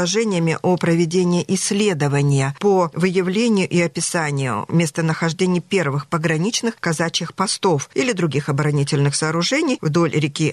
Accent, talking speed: native, 105 wpm